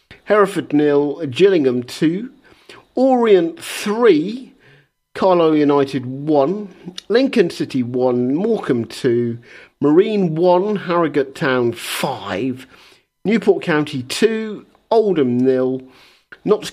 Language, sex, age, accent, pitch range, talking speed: English, male, 50-69, British, 145-210 Hz, 90 wpm